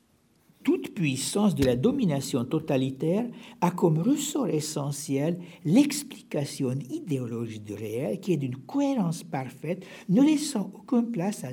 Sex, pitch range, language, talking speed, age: male, 140-225 Hz, French, 125 wpm, 60-79